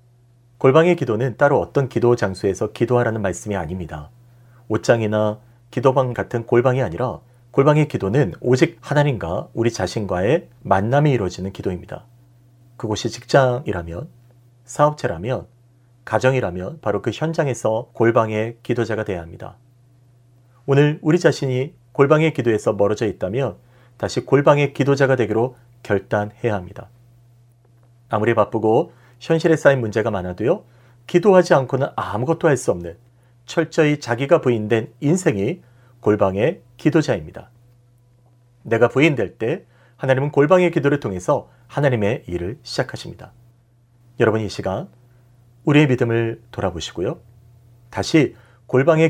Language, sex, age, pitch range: Korean, male, 40-59, 105-135 Hz